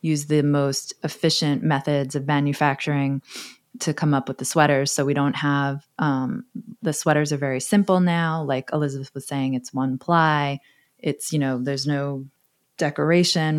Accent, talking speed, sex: American, 165 wpm, female